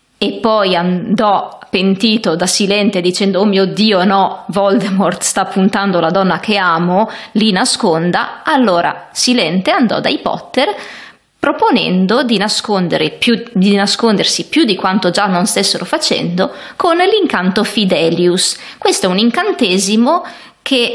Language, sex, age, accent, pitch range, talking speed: Italian, female, 20-39, native, 190-245 Hz, 125 wpm